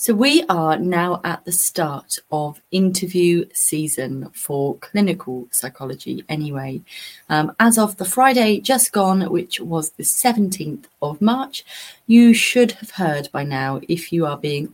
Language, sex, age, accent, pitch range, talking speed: English, female, 30-49, British, 155-220 Hz, 150 wpm